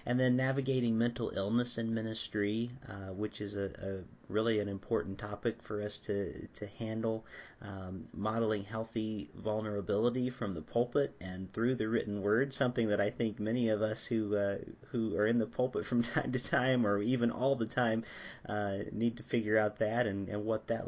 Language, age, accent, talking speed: English, 40-59, American, 190 wpm